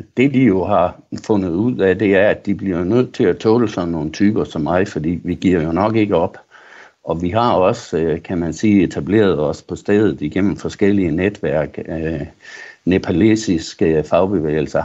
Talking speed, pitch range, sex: 180 wpm, 85-110 Hz, male